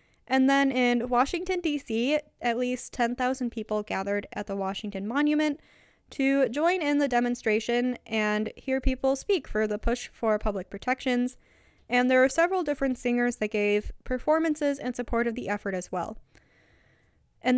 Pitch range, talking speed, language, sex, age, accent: 215-270 Hz, 155 wpm, English, female, 10-29, American